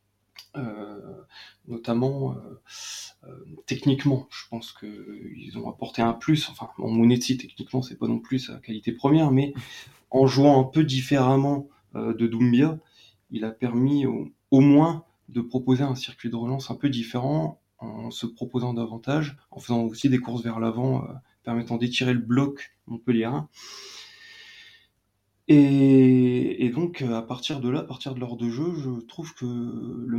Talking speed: 160 wpm